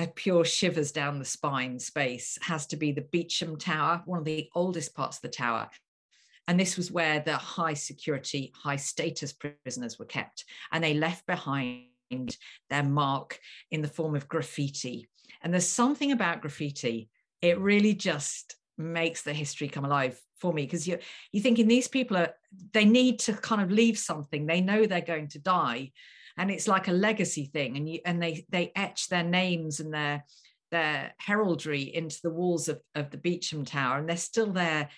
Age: 50-69